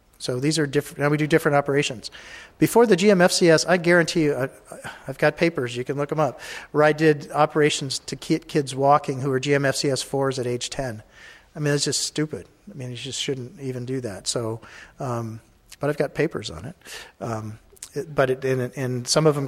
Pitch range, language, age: 125-150 Hz, English, 50-69